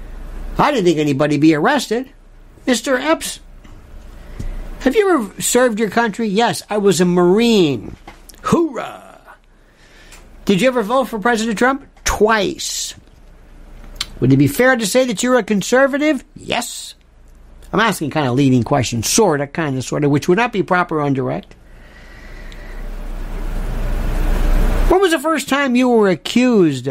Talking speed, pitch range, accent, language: 150 wpm, 170-255 Hz, American, English